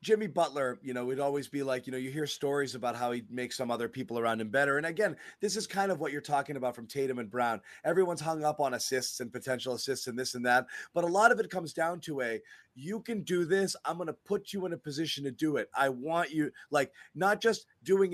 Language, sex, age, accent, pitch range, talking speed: English, male, 30-49, American, 125-170 Hz, 265 wpm